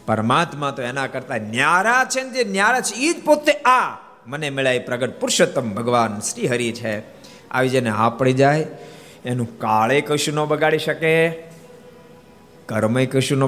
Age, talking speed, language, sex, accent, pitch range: 50-69, 75 wpm, Gujarati, male, native, 110-165 Hz